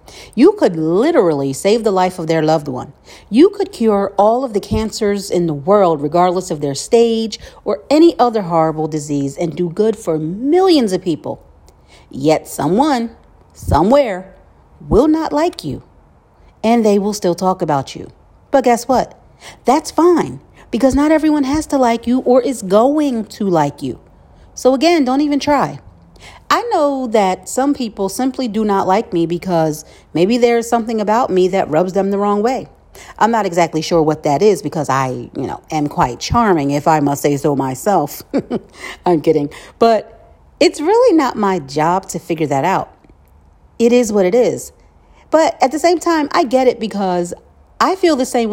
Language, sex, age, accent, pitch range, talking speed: English, female, 40-59, American, 160-255 Hz, 180 wpm